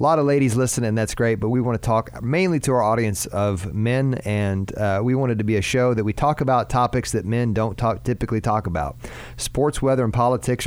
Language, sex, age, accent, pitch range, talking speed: English, male, 40-59, American, 105-130 Hz, 225 wpm